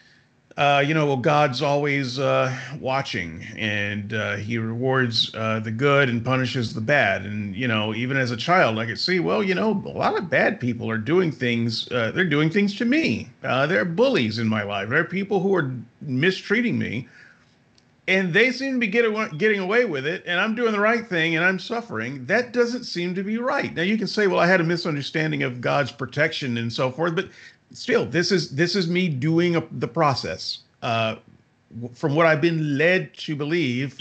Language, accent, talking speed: English, American, 210 wpm